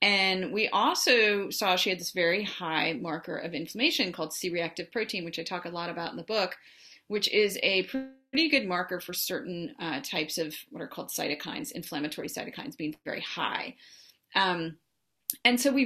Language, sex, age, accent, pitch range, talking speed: English, female, 30-49, American, 170-215 Hz, 180 wpm